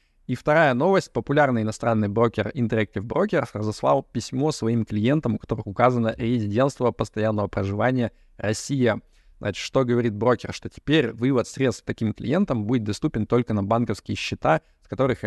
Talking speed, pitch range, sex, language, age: 145 wpm, 110-130 Hz, male, Russian, 20-39